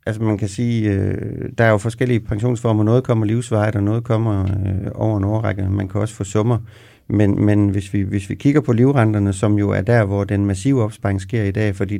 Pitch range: 100-120 Hz